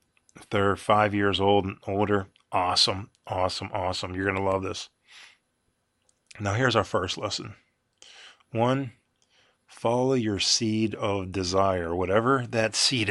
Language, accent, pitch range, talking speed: English, American, 90-105 Hz, 130 wpm